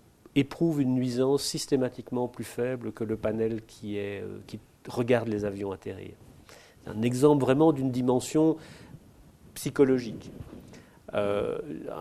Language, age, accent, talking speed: French, 40-59, French, 120 wpm